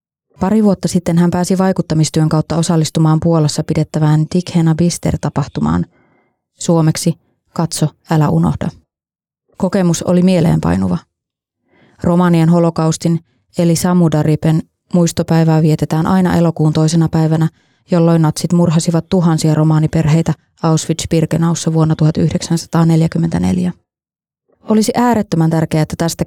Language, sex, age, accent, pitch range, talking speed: Finnish, female, 20-39, native, 160-180 Hz, 95 wpm